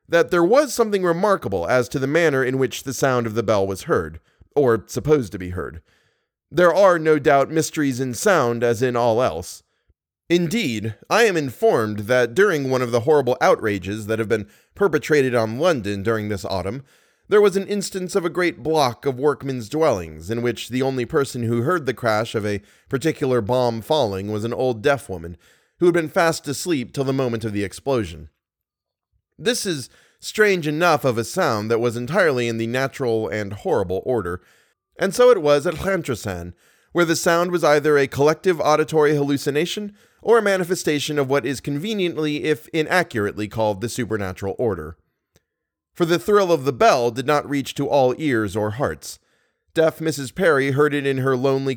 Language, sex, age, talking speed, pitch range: English, male, 30-49, 185 wpm, 110-160 Hz